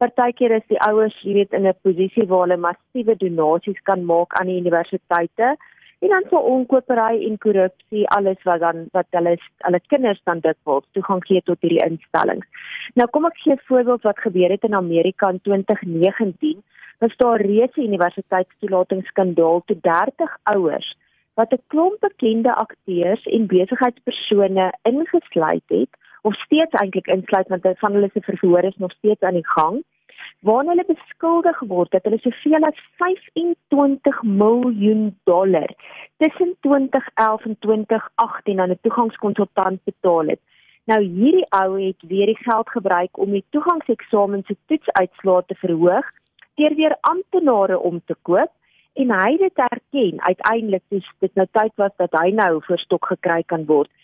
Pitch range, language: 185-250 Hz, German